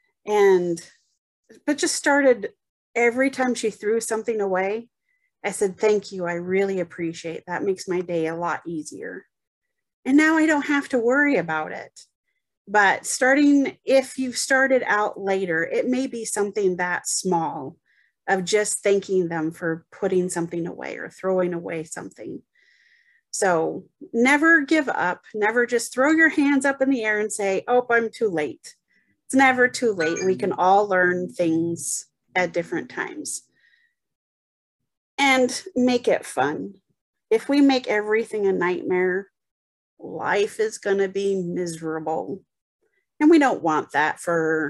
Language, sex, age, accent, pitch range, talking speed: English, female, 30-49, American, 180-275 Hz, 150 wpm